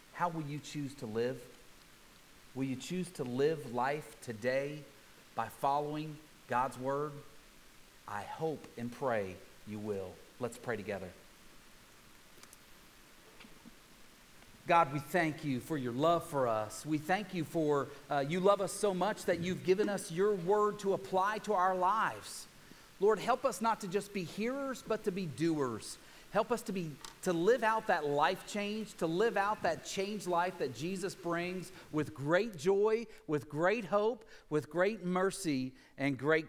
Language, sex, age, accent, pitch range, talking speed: English, male, 40-59, American, 135-185 Hz, 160 wpm